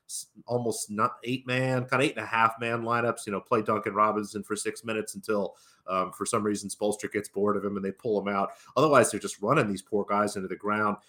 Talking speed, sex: 215 wpm, male